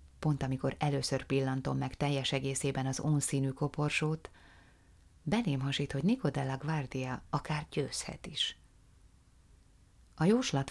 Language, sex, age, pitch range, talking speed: Hungarian, female, 30-49, 130-165 Hz, 110 wpm